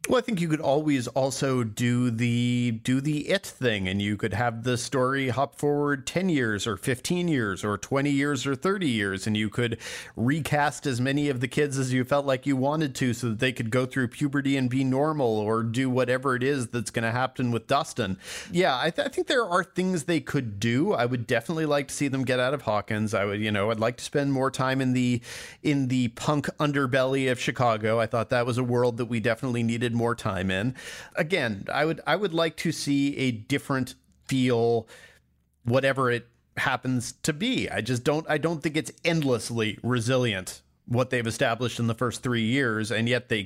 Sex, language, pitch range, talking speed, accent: male, English, 115-140 Hz, 215 wpm, American